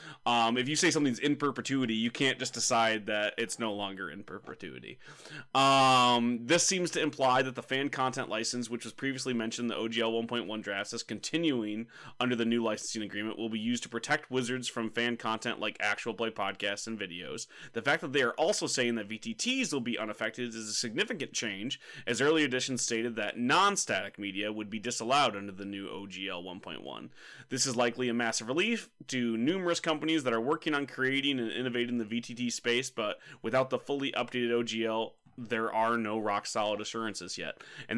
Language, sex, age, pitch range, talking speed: English, male, 30-49, 115-140 Hz, 195 wpm